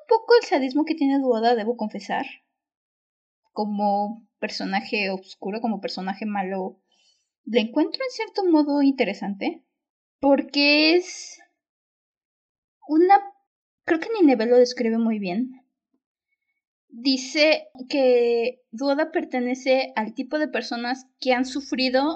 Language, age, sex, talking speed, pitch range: Spanish, 20-39, female, 110 wpm, 220-285 Hz